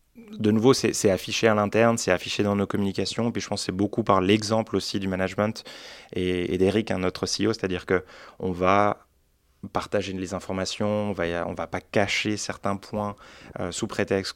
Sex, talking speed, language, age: male, 195 wpm, French, 20-39